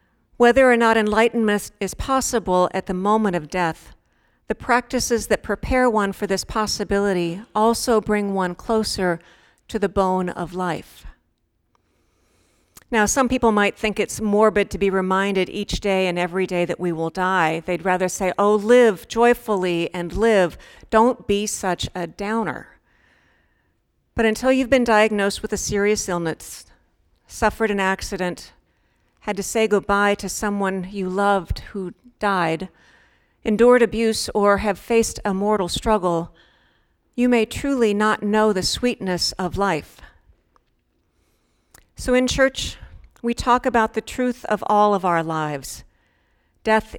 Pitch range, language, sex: 185-220 Hz, English, female